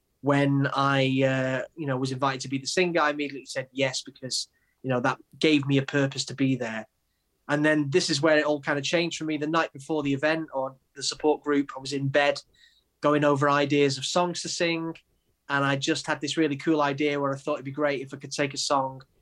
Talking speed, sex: 245 wpm, male